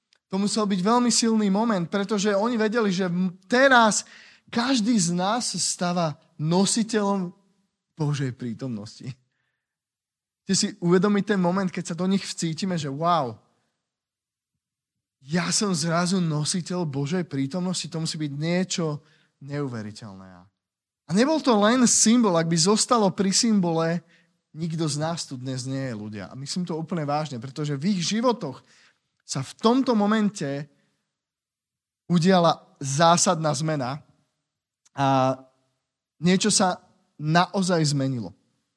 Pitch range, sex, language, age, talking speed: 150-200 Hz, male, Slovak, 20-39, 125 wpm